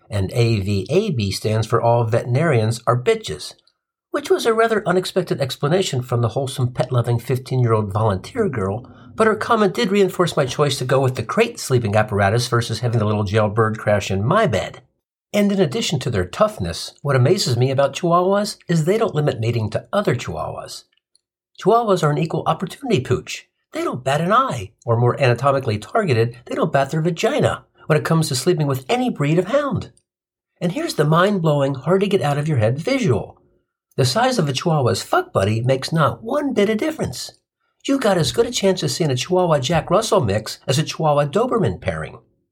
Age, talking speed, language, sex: 50-69, 180 wpm, English, male